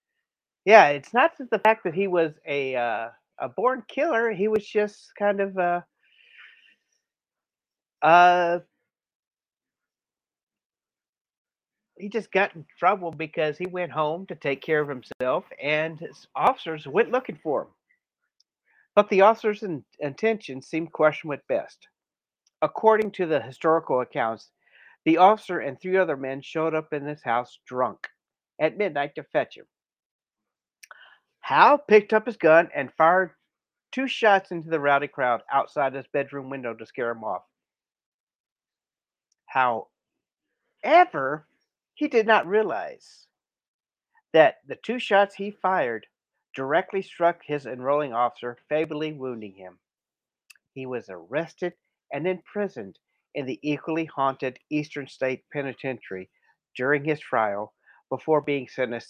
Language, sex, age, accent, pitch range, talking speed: English, male, 50-69, American, 140-205 Hz, 130 wpm